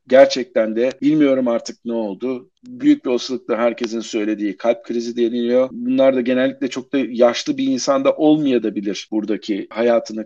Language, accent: Turkish, native